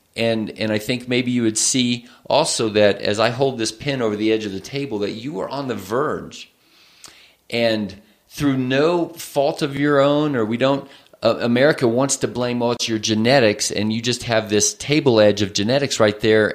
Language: English